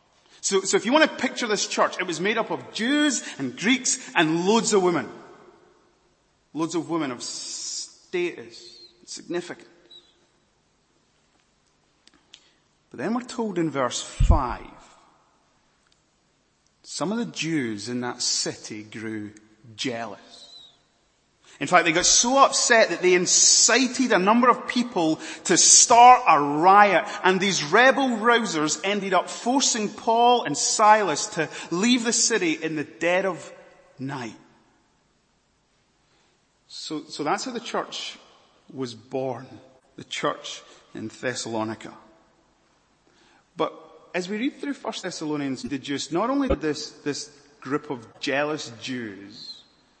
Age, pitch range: 30-49, 145-240 Hz